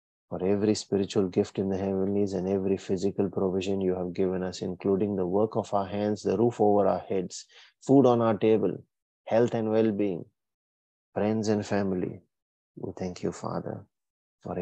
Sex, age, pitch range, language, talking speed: male, 30-49, 95-110 Hz, English, 170 wpm